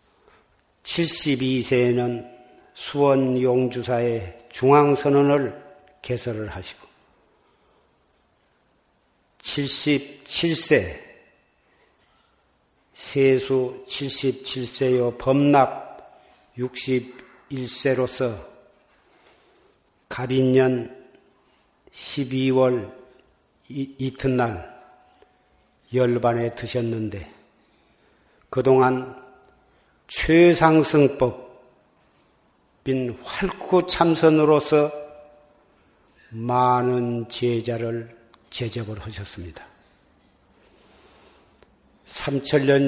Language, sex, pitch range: Korean, male, 120-140 Hz